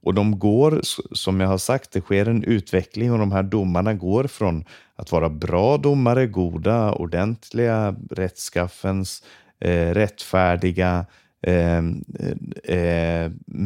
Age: 30-49